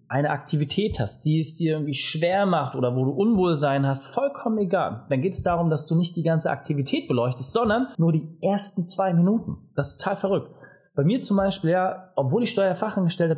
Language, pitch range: German, 140-195 Hz